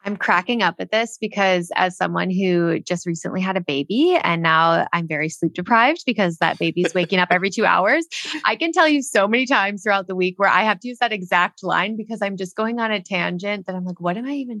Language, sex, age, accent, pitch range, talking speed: English, female, 20-39, American, 175-230 Hz, 245 wpm